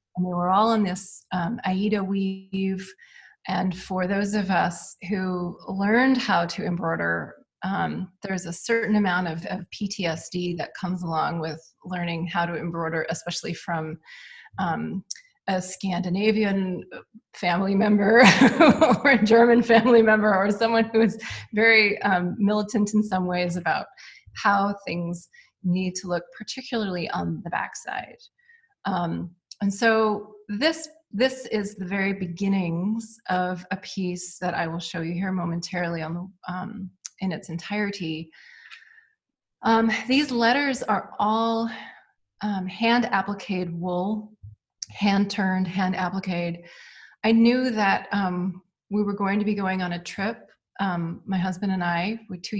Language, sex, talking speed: English, female, 140 wpm